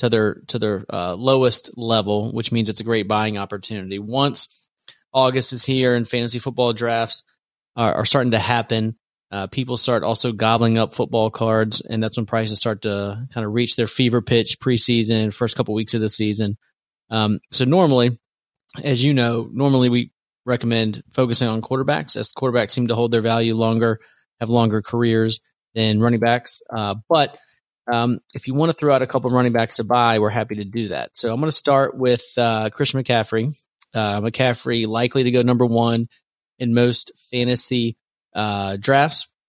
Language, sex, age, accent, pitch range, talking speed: English, male, 30-49, American, 110-125 Hz, 185 wpm